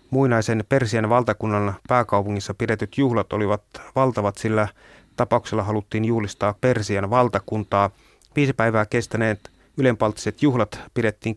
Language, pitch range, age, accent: Finnish, 105-125 Hz, 30-49, native